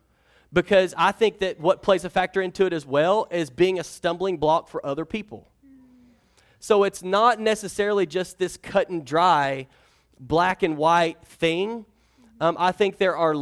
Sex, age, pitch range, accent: male, 30-49, 160-195 Hz, American